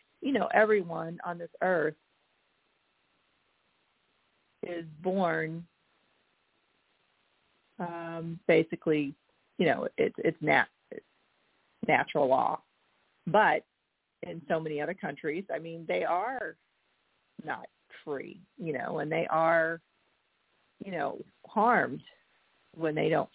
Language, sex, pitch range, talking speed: English, female, 175-230 Hz, 105 wpm